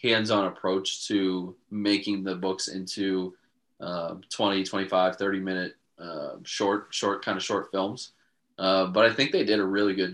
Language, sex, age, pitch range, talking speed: English, male, 20-39, 95-105 Hz, 165 wpm